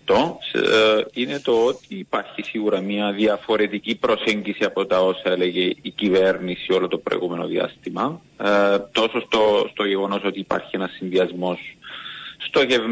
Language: Greek